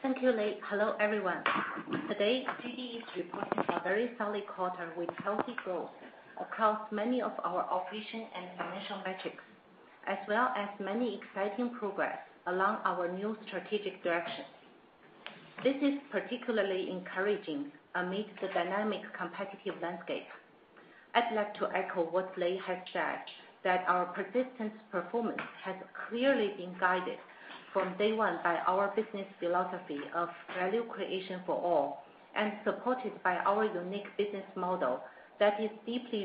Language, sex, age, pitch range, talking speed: English, female, 50-69, 180-215 Hz, 135 wpm